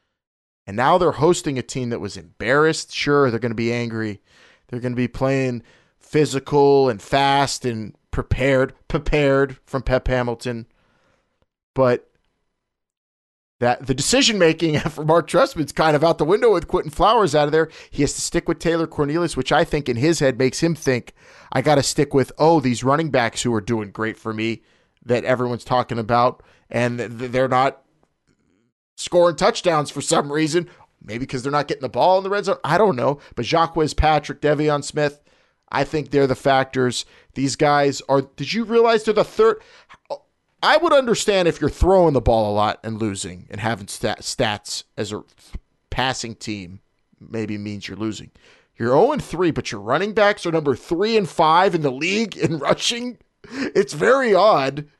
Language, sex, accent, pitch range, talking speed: English, male, American, 120-165 Hz, 180 wpm